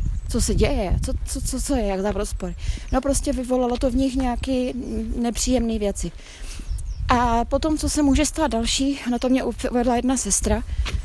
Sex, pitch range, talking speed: female, 220-255 Hz, 185 wpm